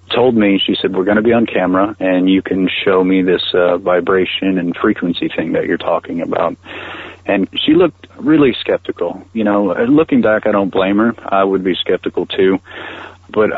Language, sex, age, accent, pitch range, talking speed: English, male, 30-49, American, 95-110 Hz, 195 wpm